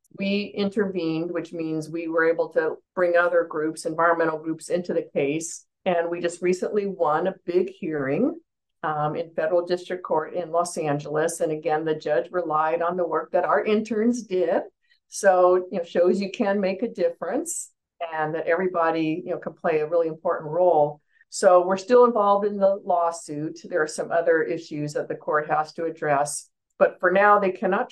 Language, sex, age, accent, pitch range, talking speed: English, female, 50-69, American, 165-210 Hz, 190 wpm